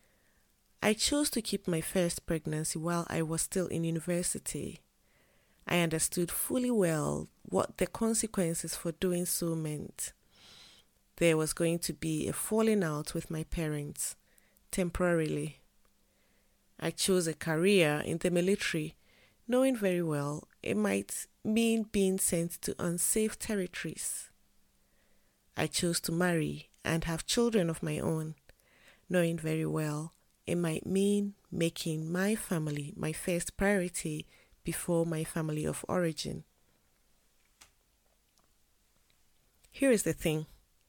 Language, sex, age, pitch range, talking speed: English, female, 30-49, 155-190 Hz, 125 wpm